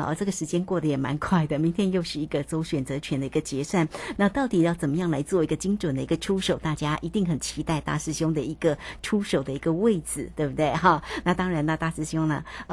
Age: 60-79